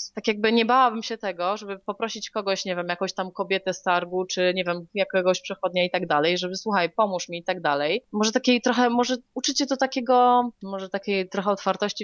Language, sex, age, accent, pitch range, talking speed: Polish, female, 20-39, native, 180-220 Hz, 205 wpm